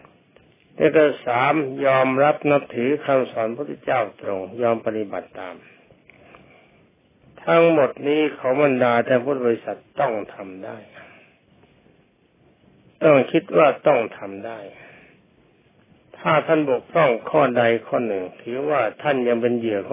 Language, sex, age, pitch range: Thai, male, 60-79, 110-145 Hz